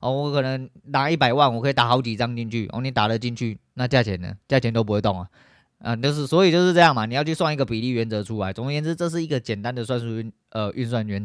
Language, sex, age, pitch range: Chinese, male, 20-39, 110-140 Hz